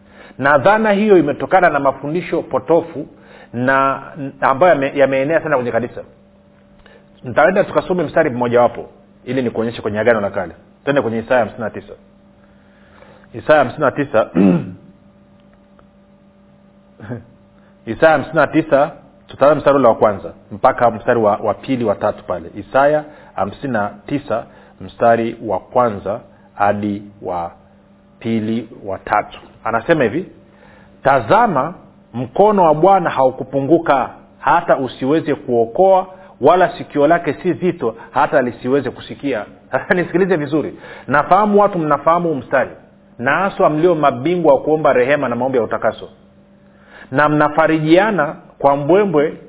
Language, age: Swahili, 40-59